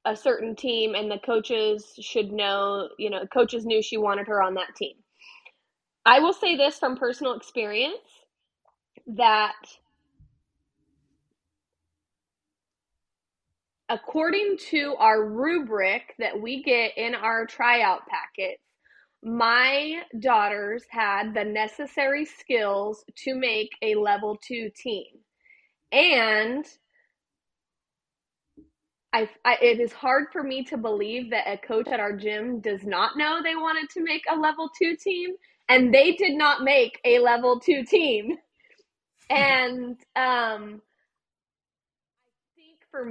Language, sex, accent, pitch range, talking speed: English, female, American, 215-300 Hz, 125 wpm